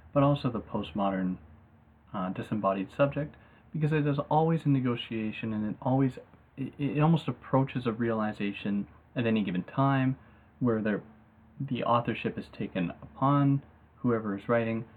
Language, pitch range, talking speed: English, 100-135 Hz, 145 wpm